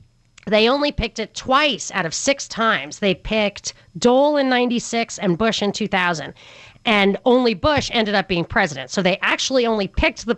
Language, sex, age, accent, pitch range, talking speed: English, female, 40-59, American, 180-235 Hz, 180 wpm